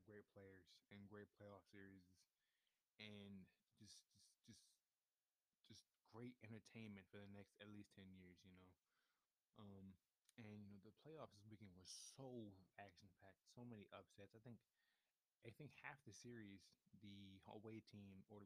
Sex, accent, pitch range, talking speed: male, American, 95-110 Hz, 155 wpm